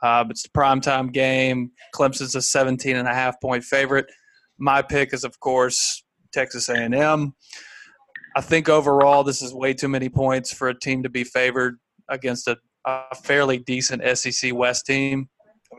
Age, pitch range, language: 30-49, 125-140 Hz, English